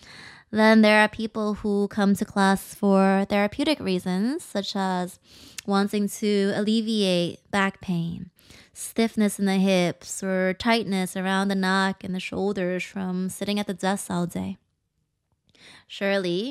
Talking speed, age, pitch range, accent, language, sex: 140 wpm, 20-39, 185-220 Hz, American, English, female